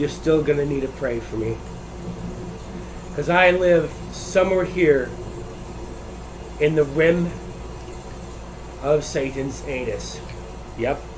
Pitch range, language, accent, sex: 115-155 Hz, English, American, male